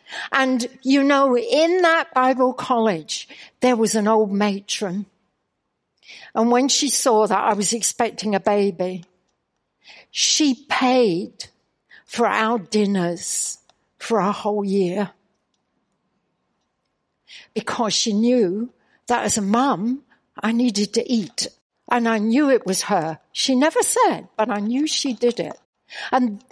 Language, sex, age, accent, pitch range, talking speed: English, female, 60-79, British, 220-295 Hz, 130 wpm